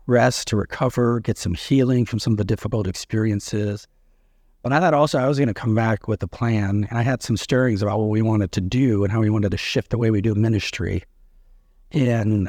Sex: male